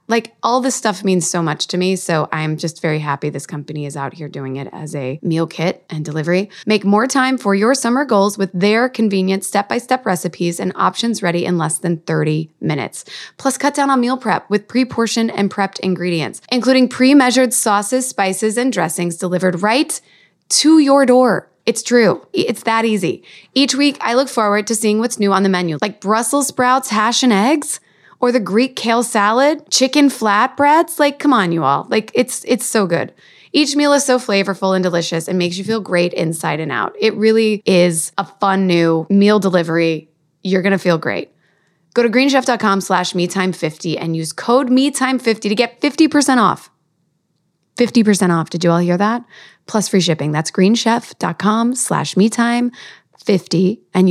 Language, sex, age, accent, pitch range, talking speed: English, female, 20-39, American, 175-245 Hz, 190 wpm